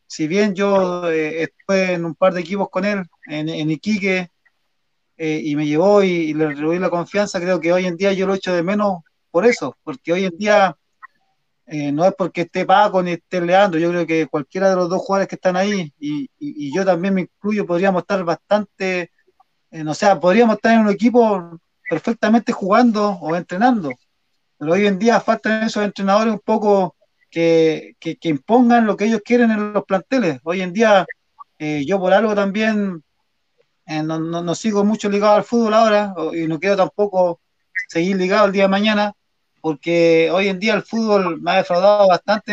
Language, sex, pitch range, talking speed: Spanish, male, 170-215 Hz, 200 wpm